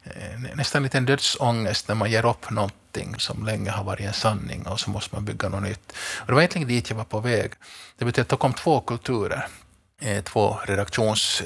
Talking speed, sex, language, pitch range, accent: 200 wpm, male, Swedish, 100-115 Hz, Finnish